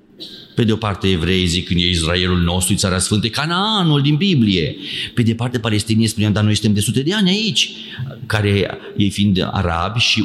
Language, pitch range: Romanian, 95-120 Hz